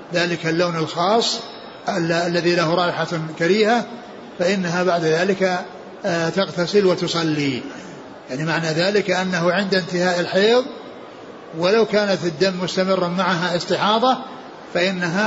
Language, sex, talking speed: Arabic, male, 100 wpm